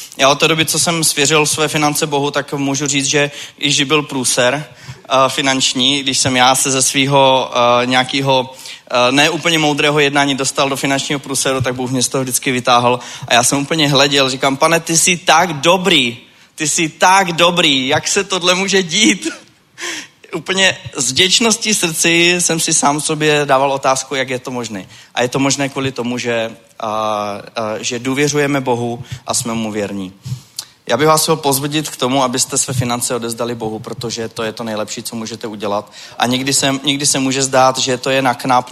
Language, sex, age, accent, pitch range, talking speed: Czech, male, 20-39, native, 120-140 Hz, 190 wpm